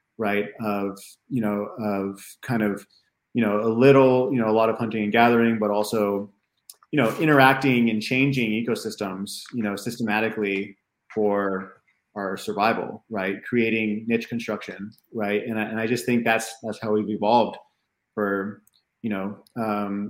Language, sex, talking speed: English, male, 160 wpm